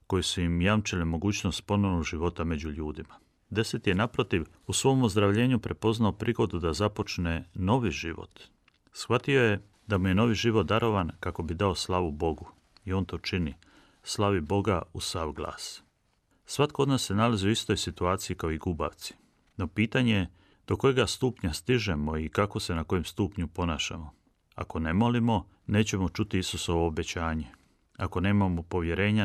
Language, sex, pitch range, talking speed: Croatian, male, 85-105 Hz, 160 wpm